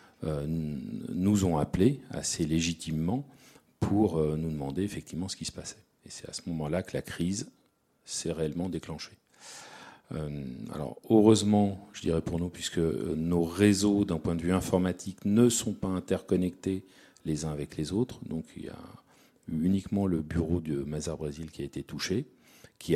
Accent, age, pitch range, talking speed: French, 40-59, 80-105 Hz, 160 wpm